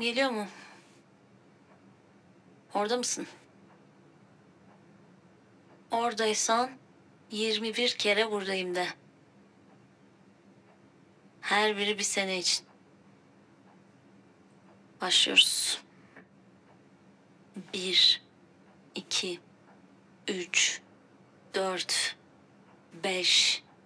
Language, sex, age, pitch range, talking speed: Turkish, female, 30-49, 175-210 Hz, 55 wpm